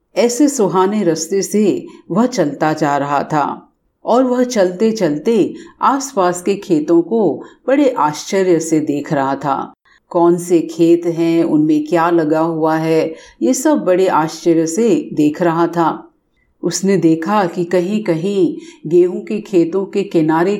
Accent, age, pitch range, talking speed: native, 50-69, 165-255 Hz, 150 wpm